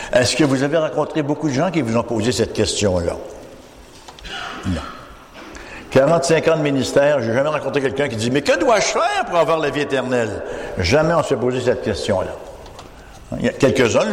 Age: 60-79